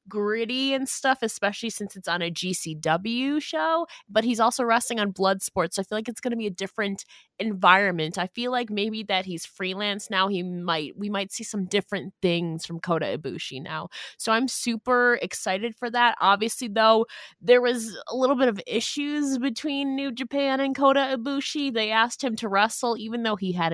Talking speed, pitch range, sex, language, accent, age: 195 wpm, 175-230 Hz, female, English, American, 20-39